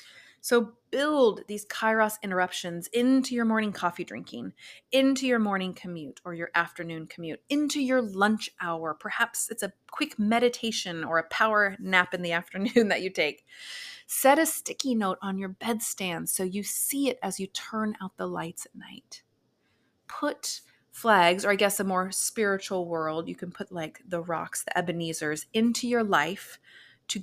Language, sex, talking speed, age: English, female, 170 wpm, 30-49